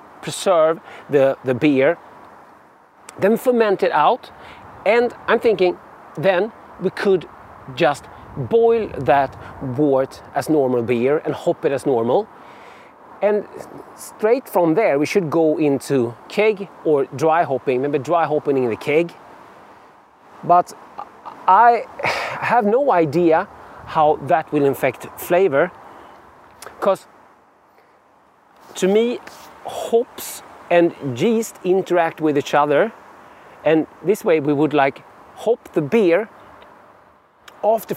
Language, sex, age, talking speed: English, male, 40-59, 115 wpm